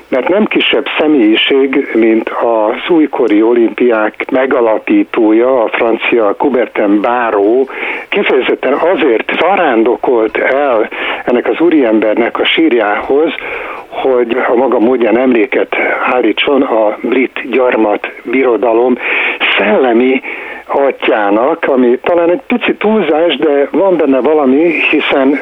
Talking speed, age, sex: 105 wpm, 60-79, male